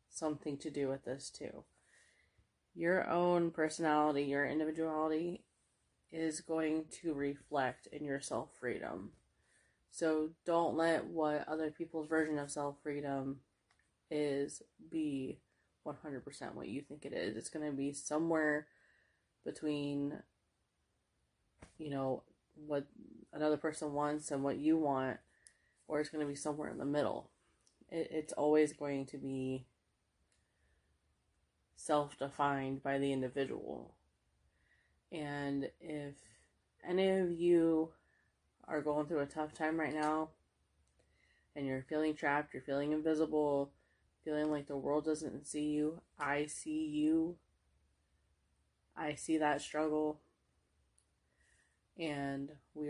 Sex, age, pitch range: female, 20-39, 140-155 Hz